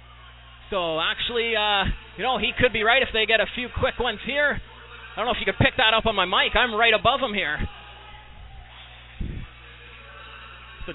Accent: American